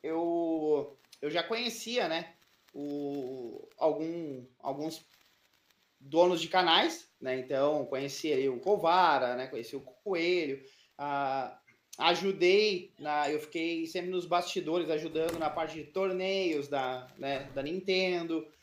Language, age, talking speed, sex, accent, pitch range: Portuguese, 20-39, 120 wpm, male, Brazilian, 160-210 Hz